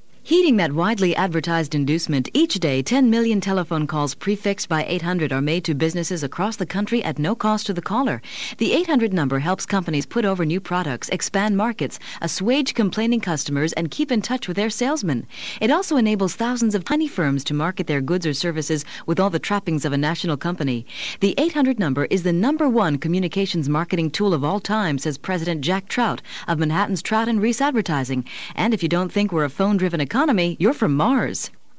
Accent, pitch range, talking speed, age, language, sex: American, 155-220 Hz, 195 wpm, 40-59, English, female